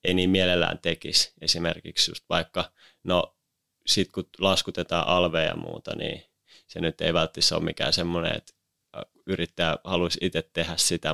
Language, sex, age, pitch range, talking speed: Finnish, male, 20-39, 85-95 Hz, 150 wpm